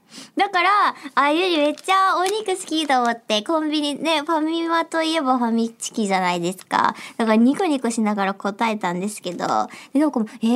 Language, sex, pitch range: Japanese, male, 225-360 Hz